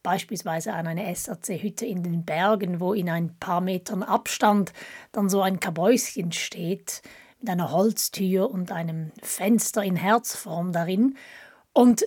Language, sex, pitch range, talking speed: German, female, 185-240 Hz, 140 wpm